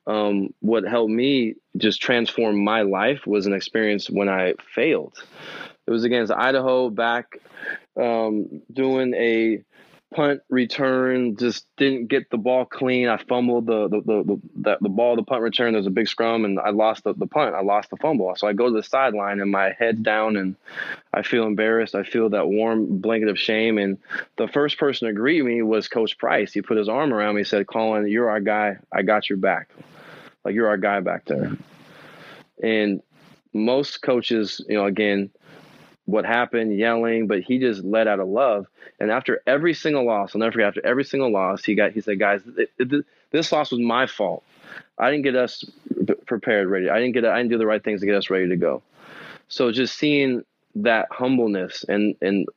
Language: English